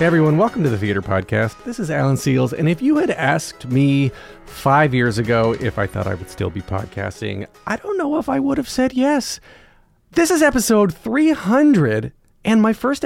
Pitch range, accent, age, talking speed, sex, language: 110-165 Hz, American, 30-49, 200 wpm, male, English